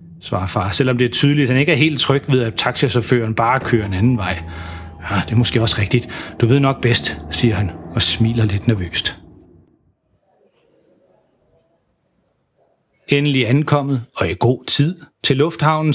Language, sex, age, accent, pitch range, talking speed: Danish, male, 30-49, native, 120-160 Hz, 165 wpm